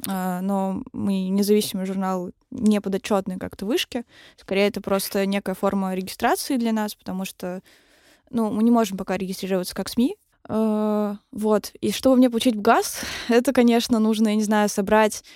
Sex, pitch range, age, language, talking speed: female, 200-240 Hz, 20-39, Russian, 160 wpm